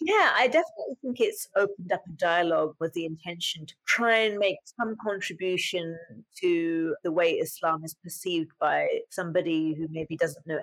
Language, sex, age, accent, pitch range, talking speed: English, female, 30-49, British, 165-190 Hz, 170 wpm